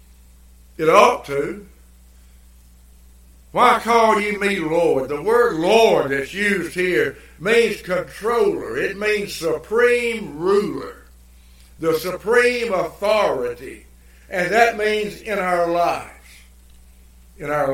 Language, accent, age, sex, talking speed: English, American, 60-79, male, 105 wpm